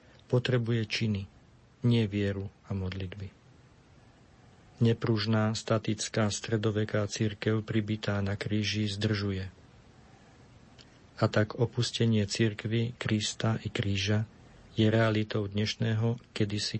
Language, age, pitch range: Slovak, 50-69, 105-115 Hz